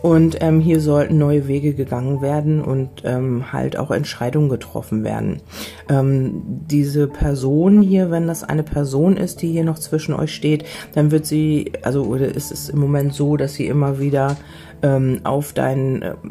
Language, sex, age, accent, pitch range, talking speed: German, female, 30-49, German, 135-155 Hz, 175 wpm